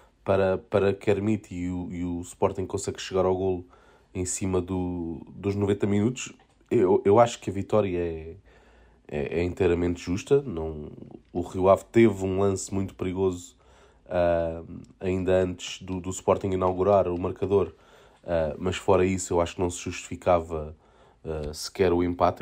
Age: 20-39